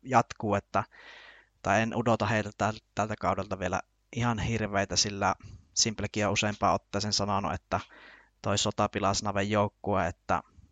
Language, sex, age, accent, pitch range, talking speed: Finnish, male, 20-39, native, 100-110 Hz, 125 wpm